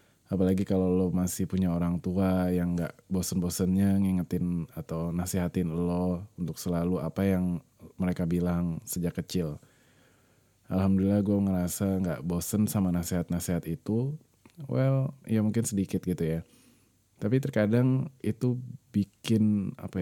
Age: 20-39